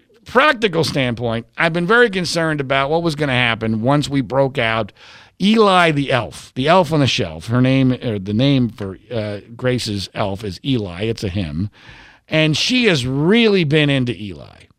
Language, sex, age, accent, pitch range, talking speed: English, male, 50-69, American, 130-205 Hz, 185 wpm